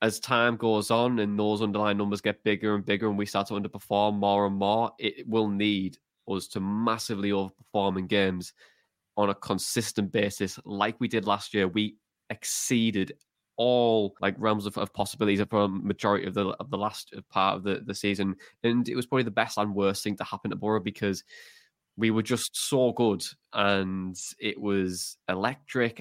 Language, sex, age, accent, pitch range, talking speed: English, male, 10-29, British, 100-110 Hz, 190 wpm